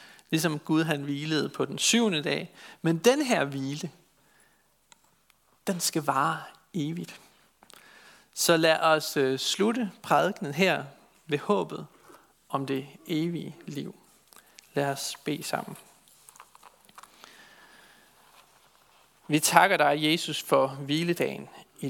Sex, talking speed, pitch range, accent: male, 105 wpm, 140-175 Hz, native